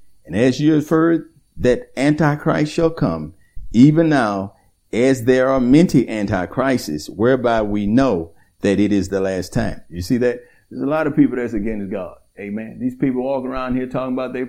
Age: 50-69